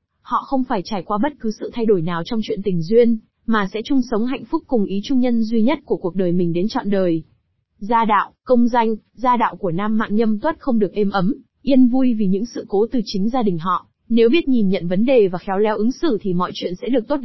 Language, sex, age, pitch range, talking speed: Vietnamese, female, 20-39, 195-250 Hz, 270 wpm